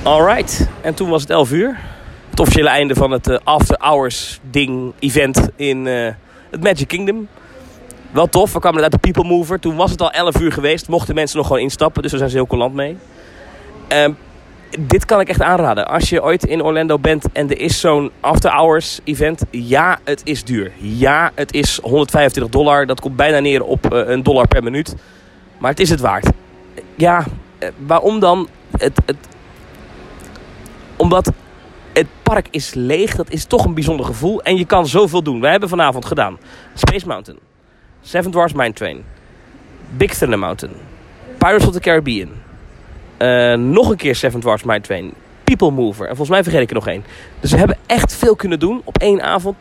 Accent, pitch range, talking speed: Dutch, 130-170 Hz, 190 wpm